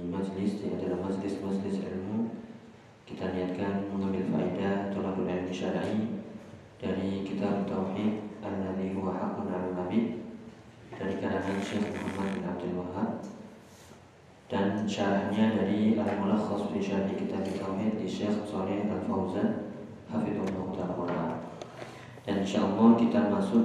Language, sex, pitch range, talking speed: Indonesian, male, 100-105 Hz, 110 wpm